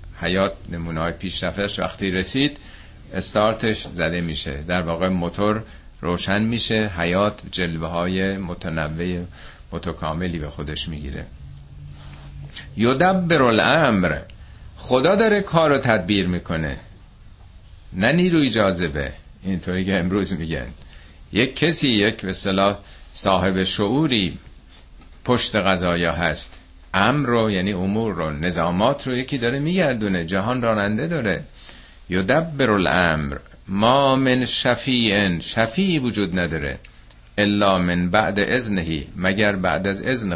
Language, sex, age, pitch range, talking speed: Persian, male, 50-69, 85-120 Hz, 110 wpm